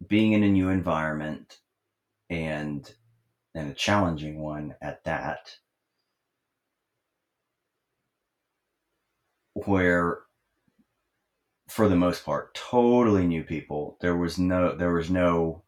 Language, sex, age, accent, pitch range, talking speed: English, male, 30-49, American, 80-105 Hz, 100 wpm